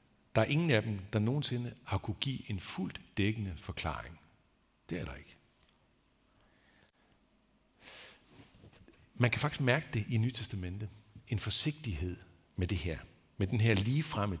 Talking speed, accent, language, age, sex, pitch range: 145 wpm, native, Danish, 50-69, male, 90-115 Hz